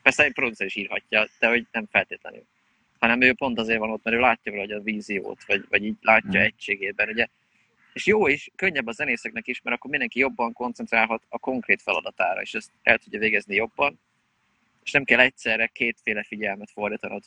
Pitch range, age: 105-120 Hz, 20-39